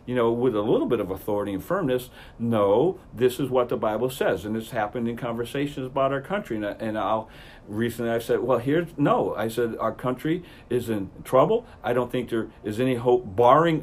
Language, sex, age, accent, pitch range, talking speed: English, male, 50-69, American, 120-145 Hz, 210 wpm